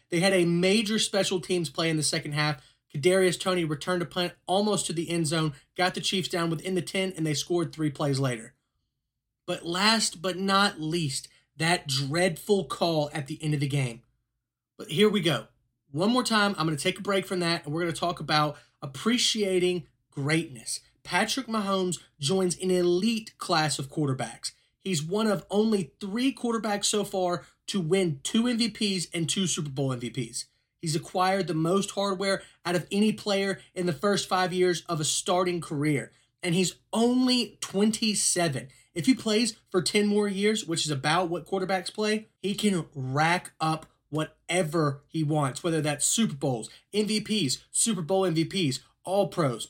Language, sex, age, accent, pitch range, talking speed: English, male, 30-49, American, 150-195 Hz, 175 wpm